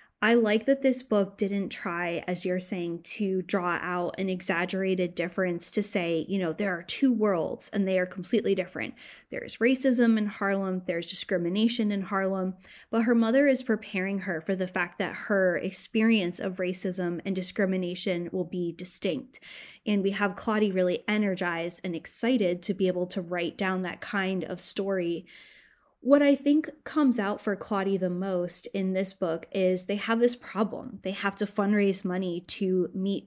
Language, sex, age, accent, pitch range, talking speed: English, female, 10-29, American, 180-210 Hz, 175 wpm